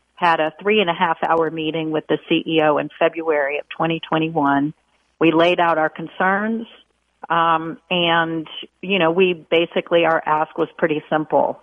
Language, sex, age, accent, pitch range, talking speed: English, female, 50-69, American, 160-190 Hz, 145 wpm